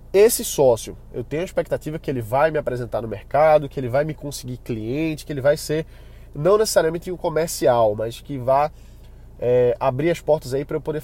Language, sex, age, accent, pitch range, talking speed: Portuguese, male, 20-39, Brazilian, 120-160 Hz, 205 wpm